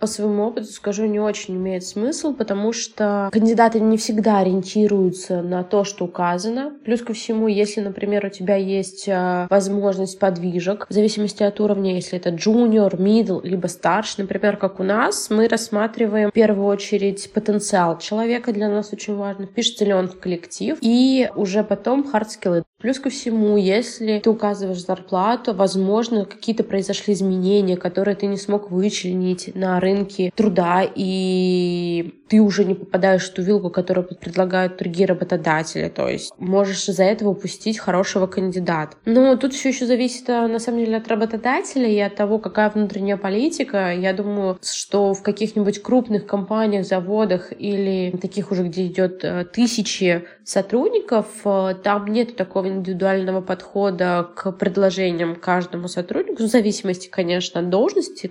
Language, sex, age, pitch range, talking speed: Russian, female, 20-39, 185-220 Hz, 150 wpm